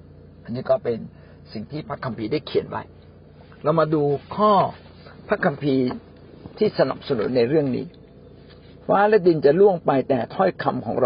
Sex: male